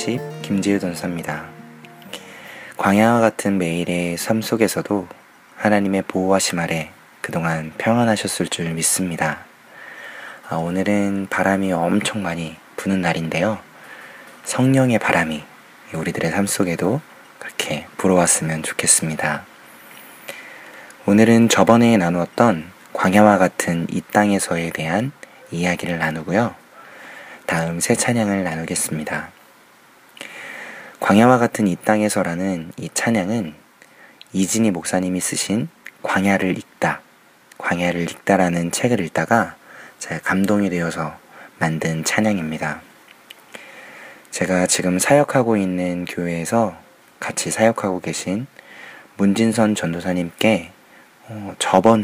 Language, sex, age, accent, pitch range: Korean, male, 20-39, native, 85-105 Hz